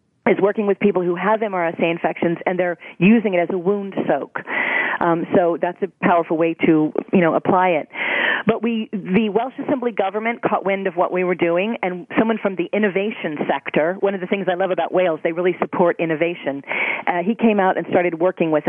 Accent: American